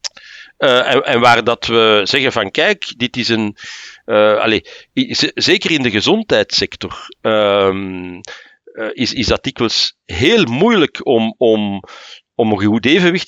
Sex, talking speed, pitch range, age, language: male, 140 wpm, 110-150 Hz, 50-69, Dutch